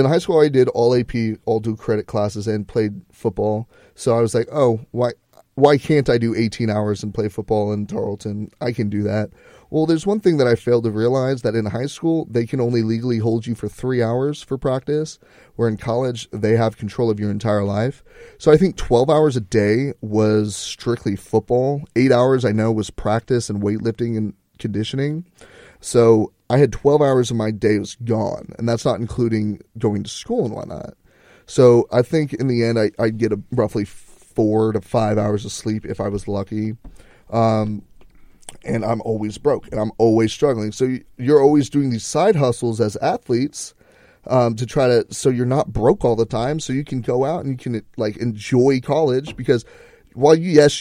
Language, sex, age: English, male, 30-49